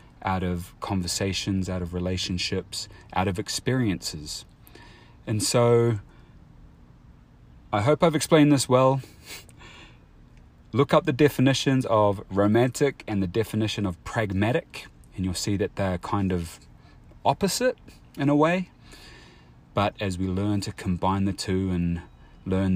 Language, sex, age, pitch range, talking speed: English, male, 30-49, 85-100 Hz, 130 wpm